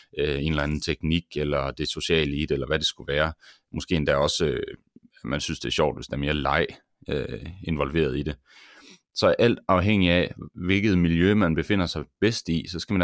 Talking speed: 200 wpm